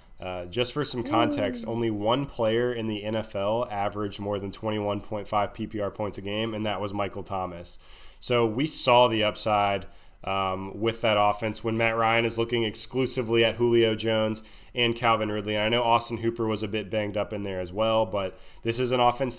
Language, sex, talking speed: English, male, 200 wpm